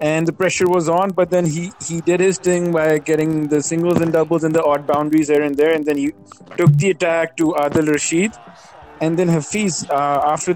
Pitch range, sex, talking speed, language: 140-165 Hz, male, 220 wpm, English